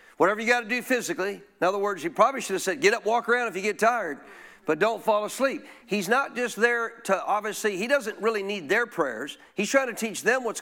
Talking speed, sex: 250 wpm, male